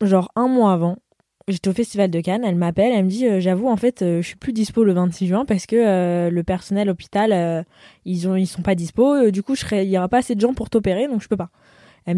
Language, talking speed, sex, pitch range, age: French, 285 wpm, female, 175-215 Hz, 20-39